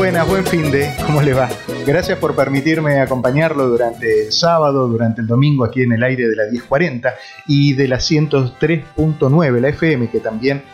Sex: male